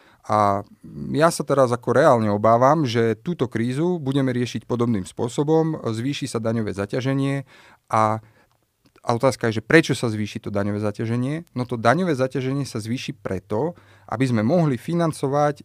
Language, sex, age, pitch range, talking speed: Slovak, male, 30-49, 110-135 Hz, 155 wpm